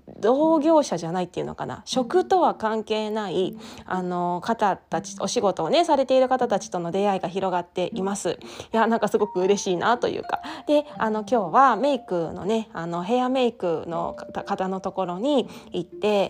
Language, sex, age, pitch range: Japanese, female, 20-39, 180-245 Hz